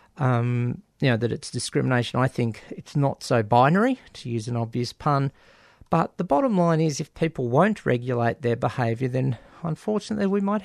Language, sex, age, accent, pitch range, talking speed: English, male, 40-59, Australian, 120-160 Hz, 180 wpm